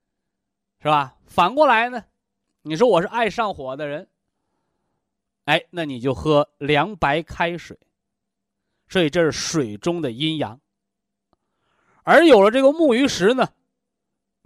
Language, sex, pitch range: Chinese, male, 160-255 Hz